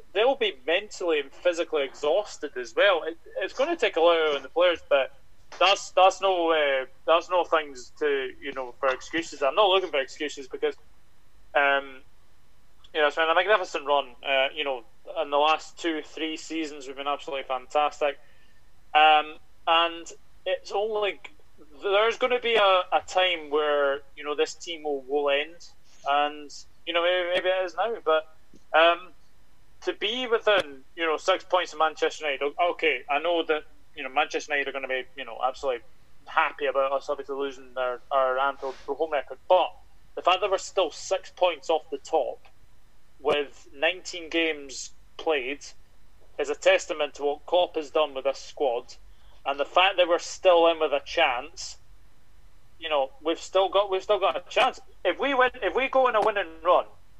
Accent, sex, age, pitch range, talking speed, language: British, male, 20-39, 140-185 Hz, 185 wpm, English